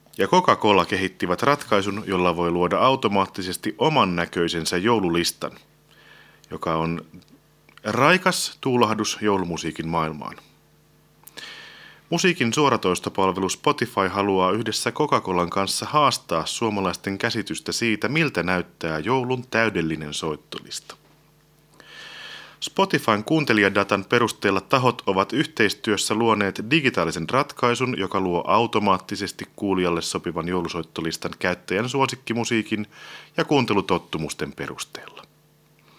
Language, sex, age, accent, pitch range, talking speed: Finnish, male, 30-49, native, 90-120 Hz, 90 wpm